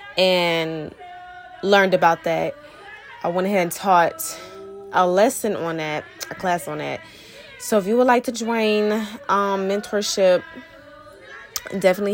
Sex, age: female, 20-39